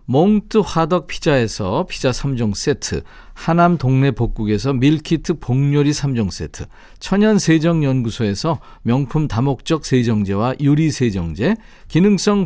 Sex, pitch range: male, 115-170 Hz